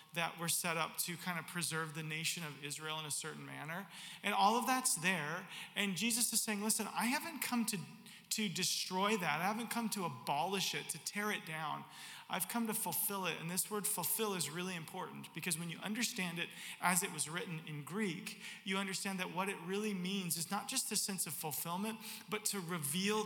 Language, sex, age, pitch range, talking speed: English, male, 40-59, 165-210 Hz, 215 wpm